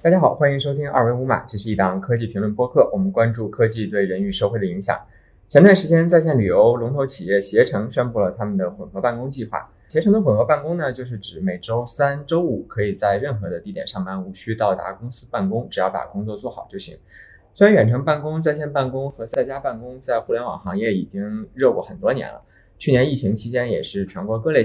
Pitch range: 105-150 Hz